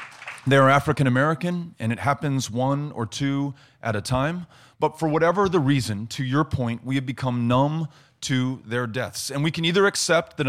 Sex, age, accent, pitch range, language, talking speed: male, 30-49, American, 120-150 Hz, English, 190 wpm